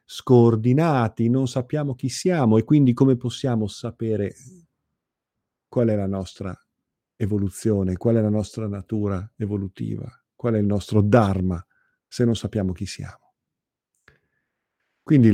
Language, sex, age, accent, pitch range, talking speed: Italian, male, 50-69, native, 105-135 Hz, 125 wpm